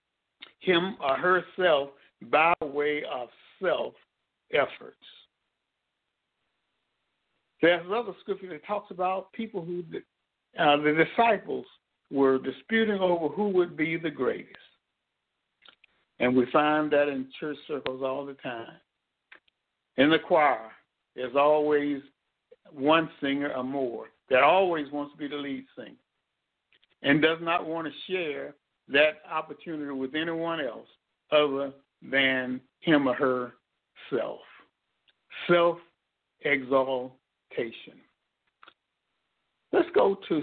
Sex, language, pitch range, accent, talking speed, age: male, English, 135-170 Hz, American, 110 wpm, 60-79